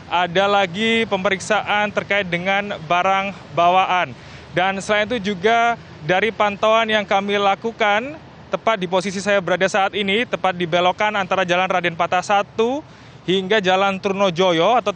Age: 20-39